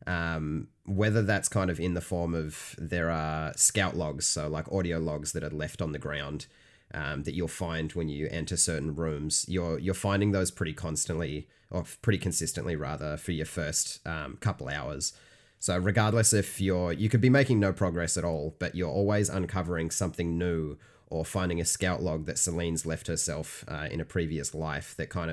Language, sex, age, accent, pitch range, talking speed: English, male, 30-49, Australian, 80-95 Hz, 195 wpm